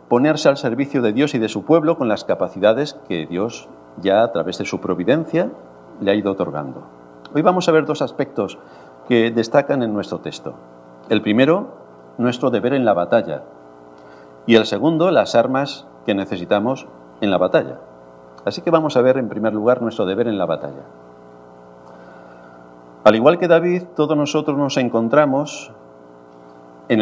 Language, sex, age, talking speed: Spanish, male, 50-69, 165 wpm